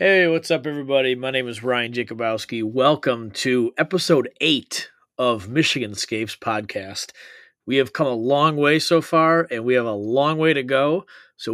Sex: male